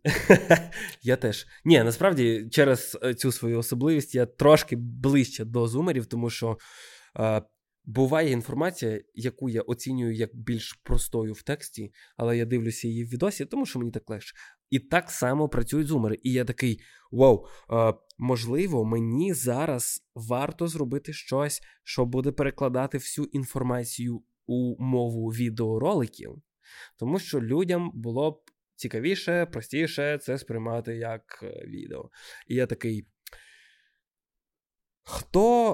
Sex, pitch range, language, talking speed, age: male, 115-150 Hz, Ukrainian, 125 wpm, 20-39